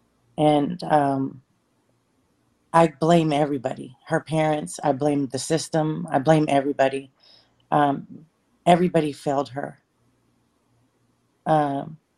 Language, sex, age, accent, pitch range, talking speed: English, female, 30-49, American, 145-170 Hz, 95 wpm